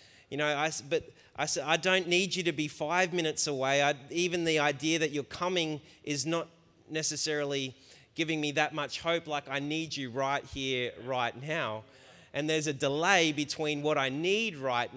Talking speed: 190 wpm